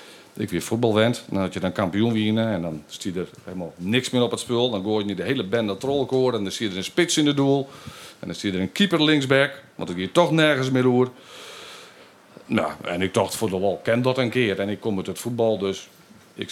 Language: Dutch